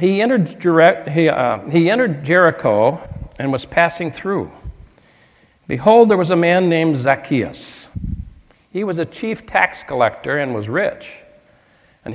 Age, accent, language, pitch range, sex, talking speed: 60-79, American, English, 140-195 Hz, male, 125 wpm